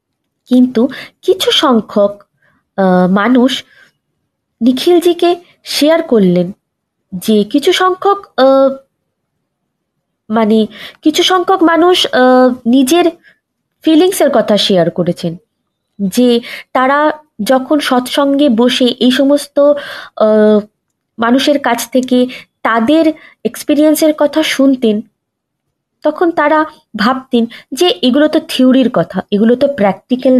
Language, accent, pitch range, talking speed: Bengali, native, 205-305 Hz, 85 wpm